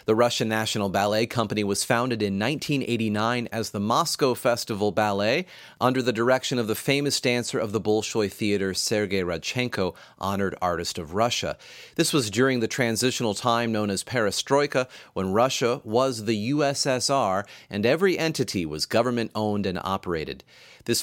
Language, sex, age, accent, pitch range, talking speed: English, male, 30-49, American, 100-125 Hz, 150 wpm